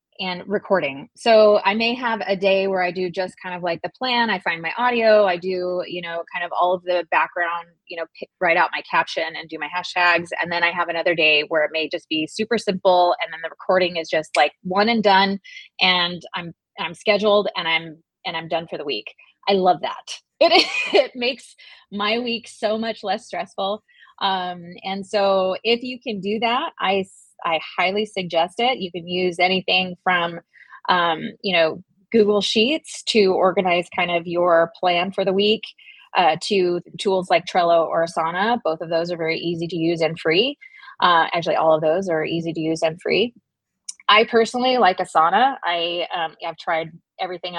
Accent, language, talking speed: American, English, 200 wpm